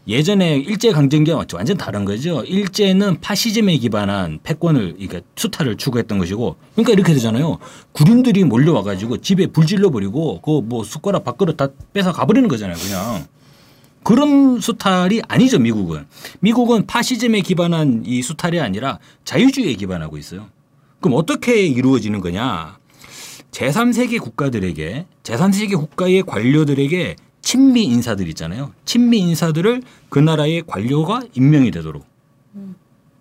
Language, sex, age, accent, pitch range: Korean, male, 30-49, native, 115-195 Hz